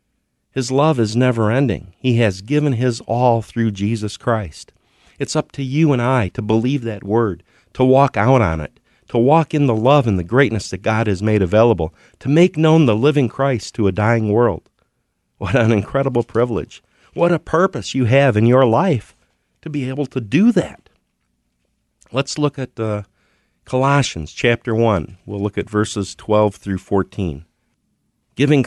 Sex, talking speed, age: male, 175 wpm, 50-69